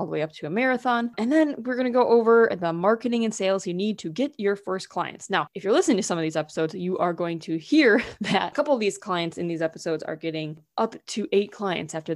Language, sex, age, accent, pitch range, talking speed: English, female, 20-39, American, 175-235 Hz, 260 wpm